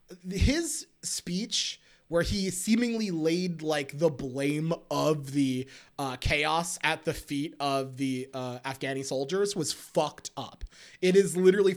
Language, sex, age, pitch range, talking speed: English, male, 20-39, 155-220 Hz, 140 wpm